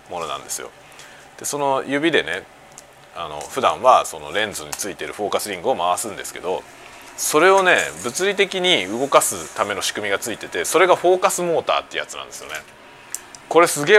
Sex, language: male, Japanese